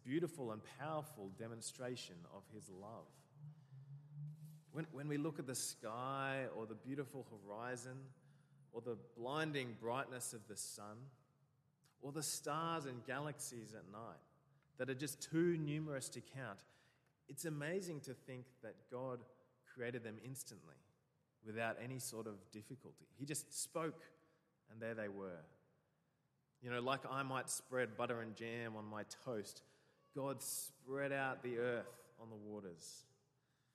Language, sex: English, male